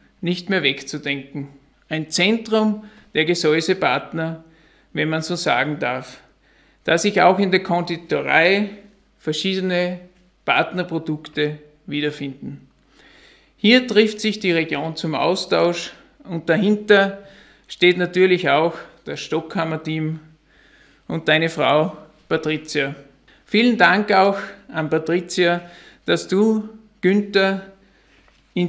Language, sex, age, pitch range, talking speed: German, male, 50-69, 155-195 Hz, 100 wpm